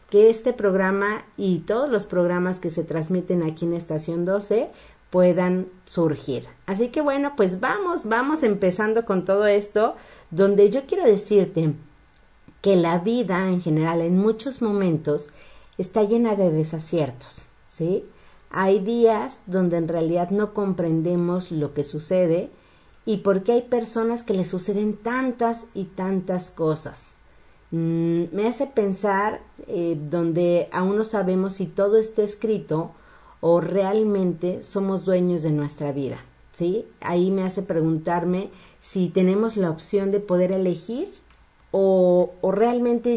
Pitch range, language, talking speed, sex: 170-210 Hz, Spanish, 140 wpm, female